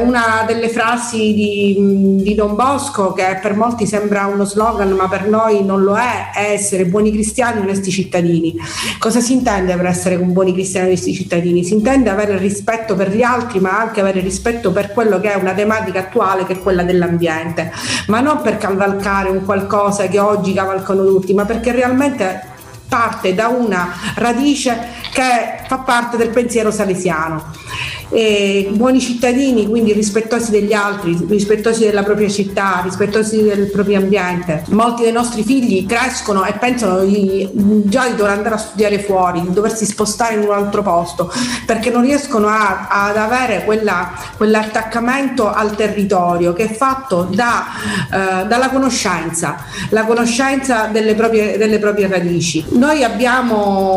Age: 40-59